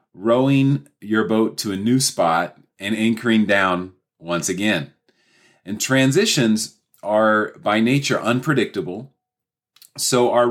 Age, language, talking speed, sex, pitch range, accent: 40-59, English, 115 wpm, male, 95-120 Hz, American